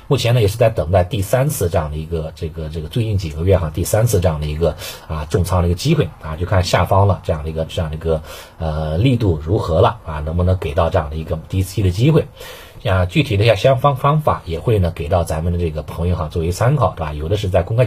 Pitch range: 80-110 Hz